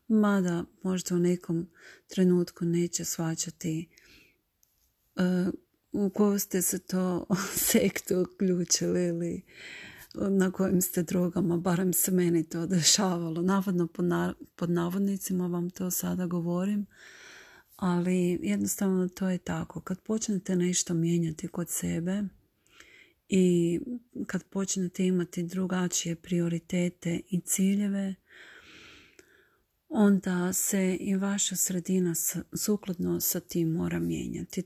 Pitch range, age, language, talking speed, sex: 175-195 Hz, 40-59, Croatian, 105 wpm, female